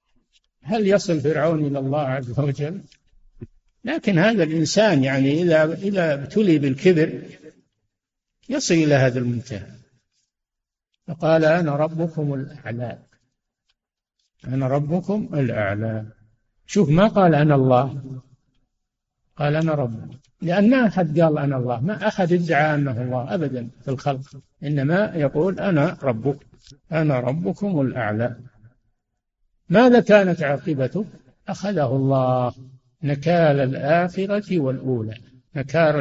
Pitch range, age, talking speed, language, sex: 135-175 Hz, 60-79, 105 wpm, Arabic, male